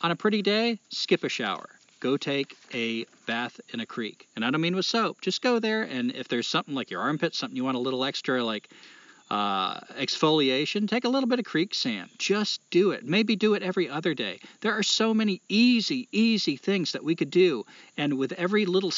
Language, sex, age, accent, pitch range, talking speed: English, male, 40-59, American, 140-215 Hz, 220 wpm